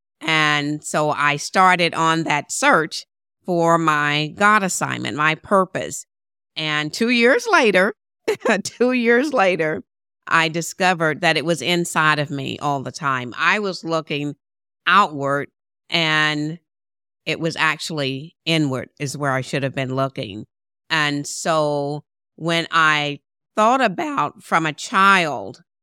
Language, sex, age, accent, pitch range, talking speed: English, female, 50-69, American, 145-175 Hz, 130 wpm